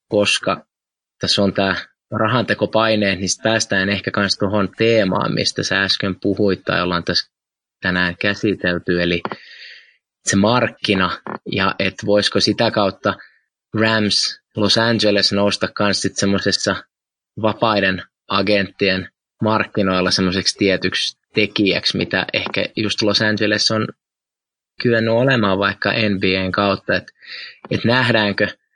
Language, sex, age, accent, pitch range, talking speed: Finnish, male, 20-39, native, 95-110 Hz, 115 wpm